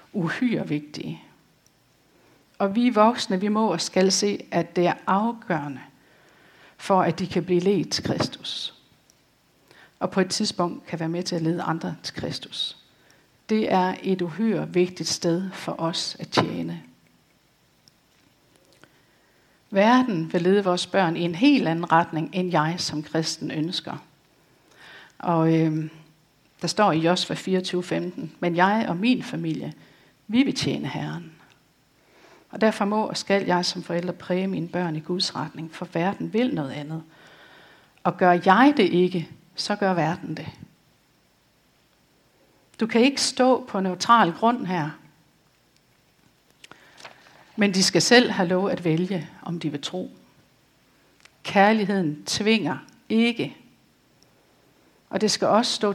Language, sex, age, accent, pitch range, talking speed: Danish, female, 60-79, native, 165-205 Hz, 140 wpm